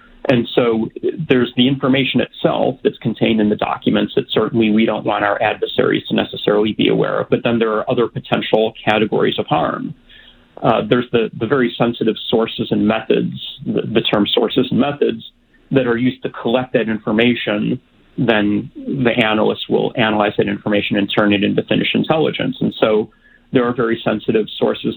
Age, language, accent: 40-59, English, American